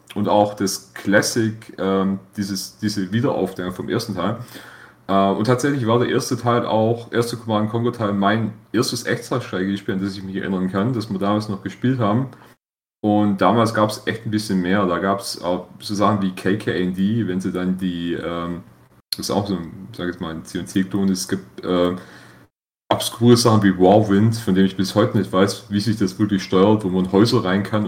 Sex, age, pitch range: male, 30-49, 95-110 Hz